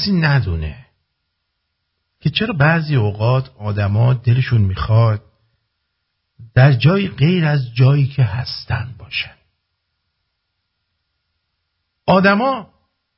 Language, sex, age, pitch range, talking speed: English, male, 50-69, 90-140 Hz, 80 wpm